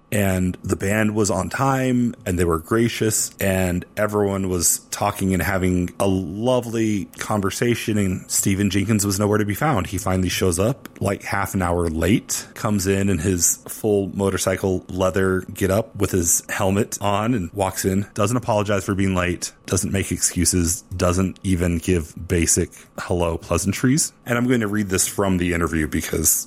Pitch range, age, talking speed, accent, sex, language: 90-110 Hz, 30-49, 170 wpm, American, male, English